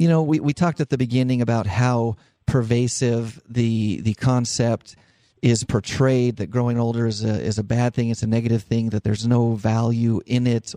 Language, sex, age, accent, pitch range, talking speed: English, male, 40-59, American, 110-130 Hz, 195 wpm